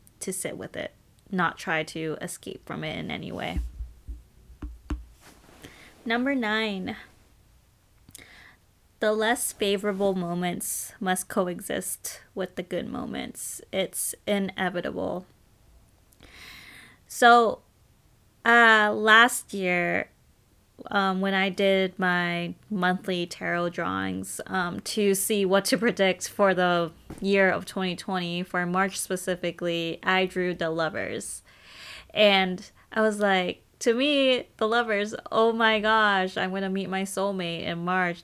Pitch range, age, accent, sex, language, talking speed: 165-200 Hz, 20-39, American, female, English, 120 wpm